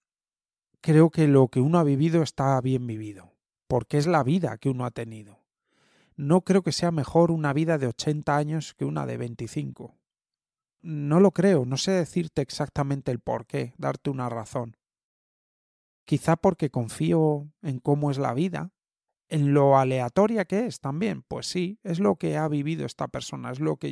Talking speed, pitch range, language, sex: 175 wpm, 130-170 Hz, Spanish, male